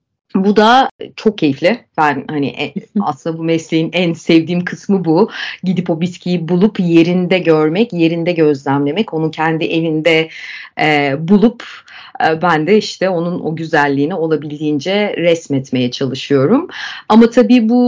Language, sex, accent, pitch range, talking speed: Turkish, female, native, 150-205 Hz, 135 wpm